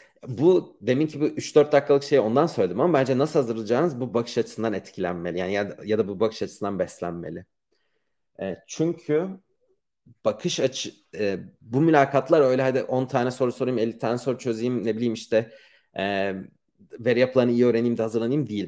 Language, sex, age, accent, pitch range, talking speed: Turkish, male, 40-59, native, 105-140 Hz, 165 wpm